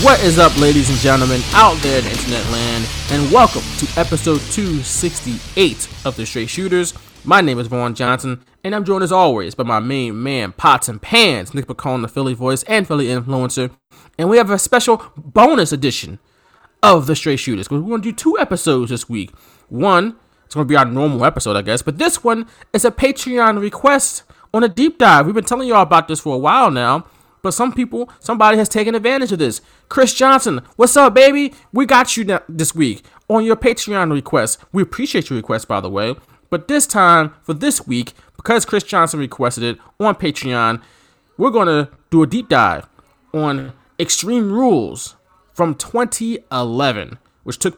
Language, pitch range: English, 130-215 Hz